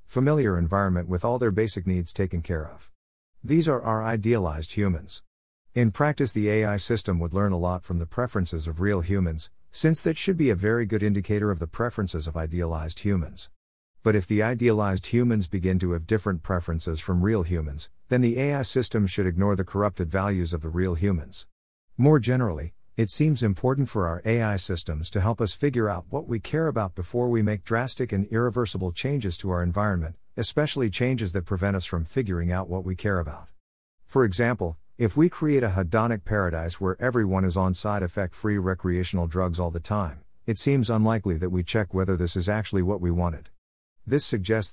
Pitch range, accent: 90-115 Hz, American